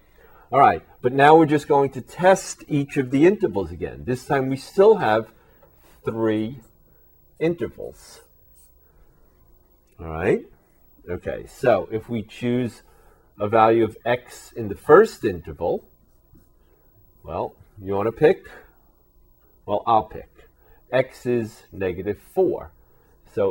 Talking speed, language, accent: 125 wpm, English, American